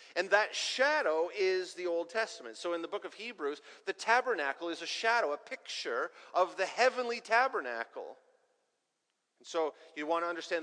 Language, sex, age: English, male, 40-59